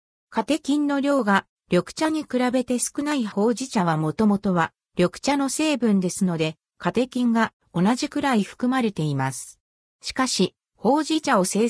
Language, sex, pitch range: Japanese, female, 175-255 Hz